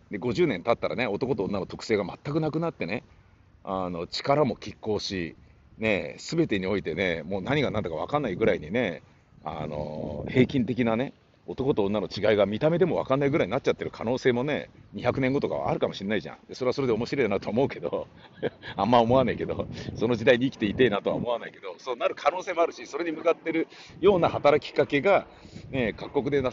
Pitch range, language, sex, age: 105-160 Hz, Japanese, male, 40-59